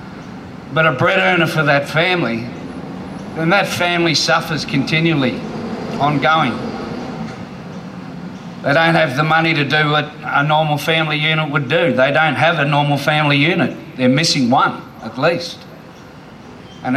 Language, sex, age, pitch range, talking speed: English, male, 50-69, 140-165 Hz, 140 wpm